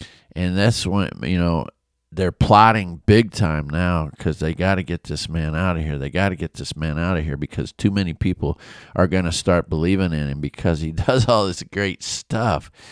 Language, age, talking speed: English, 50-69, 220 wpm